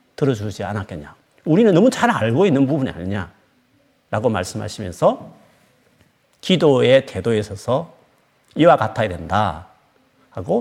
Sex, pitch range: male, 105-140 Hz